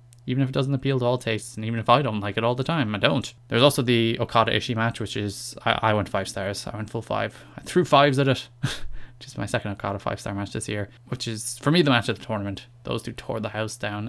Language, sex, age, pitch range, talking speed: English, male, 20-39, 105-130 Hz, 275 wpm